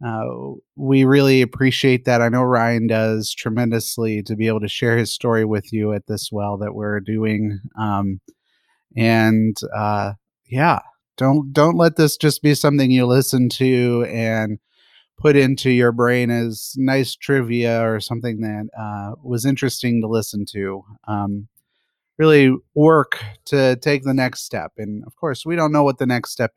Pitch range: 110-135 Hz